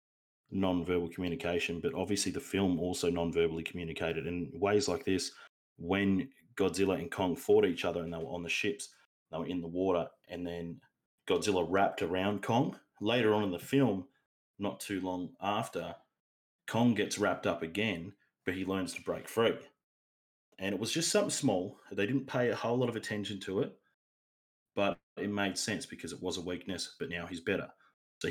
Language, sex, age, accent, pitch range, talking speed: English, male, 30-49, Australian, 90-105 Hz, 185 wpm